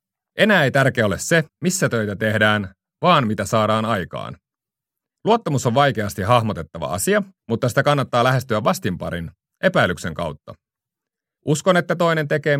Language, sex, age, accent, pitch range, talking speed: Finnish, male, 30-49, native, 100-145 Hz, 135 wpm